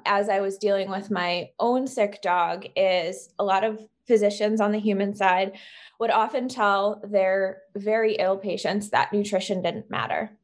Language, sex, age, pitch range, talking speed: English, female, 20-39, 195-215 Hz, 165 wpm